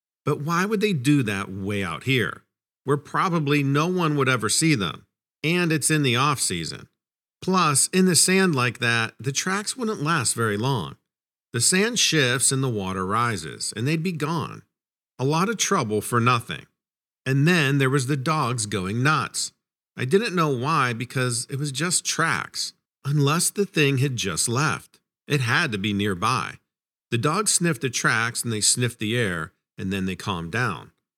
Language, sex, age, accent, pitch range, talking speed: English, male, 50-69, American, 120-175 Hz, 180 wpm